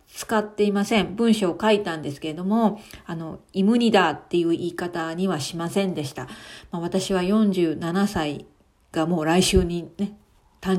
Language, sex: Japanese, female